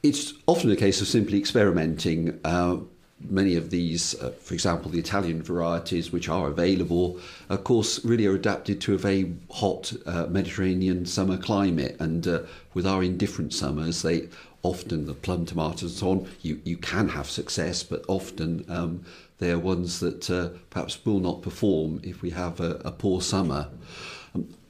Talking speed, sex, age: 175 wpm, male, 50-69